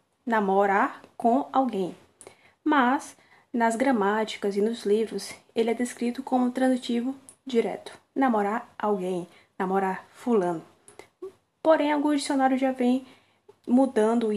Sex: female